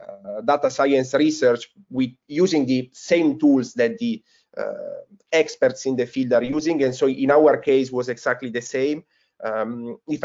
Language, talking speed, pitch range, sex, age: English, 170 wpm, 120-150 Hz, male, 30-49